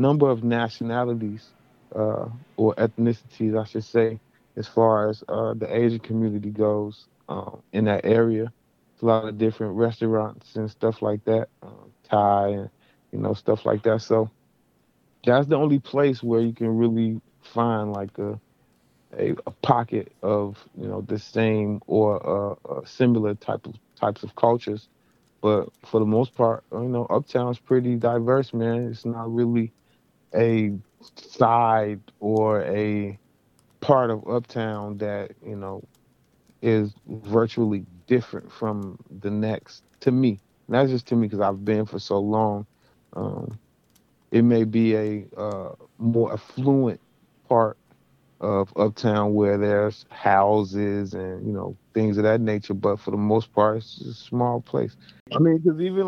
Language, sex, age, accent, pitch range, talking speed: English, male, 30-49, American, 105-120 Hz, 155 wpm